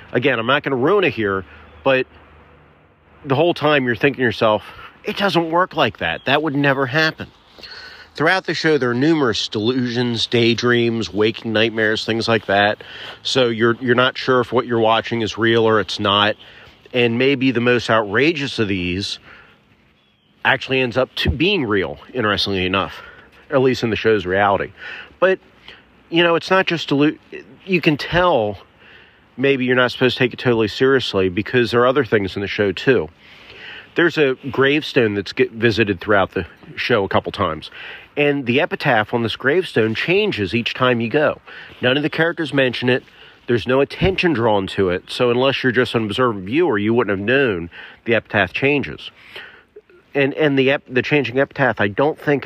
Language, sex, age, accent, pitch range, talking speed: English, male, 40-59, American, 105-140 Hz, 180 wpm